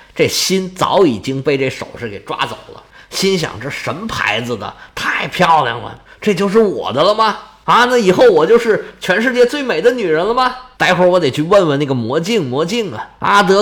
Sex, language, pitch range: male, Chinese, 135-220 Hz